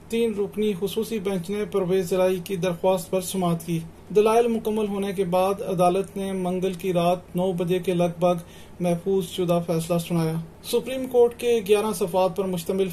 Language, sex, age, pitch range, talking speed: Urdu, male, 30-49, 180-195 Hz, 175 wpm